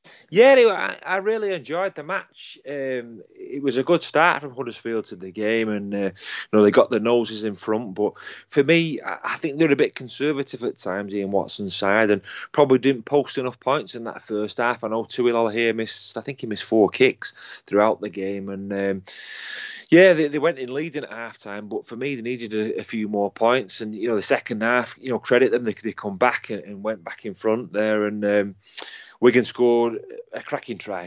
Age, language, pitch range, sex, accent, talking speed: 30-49, English, 105-130 Hz, male, British, 225 wpm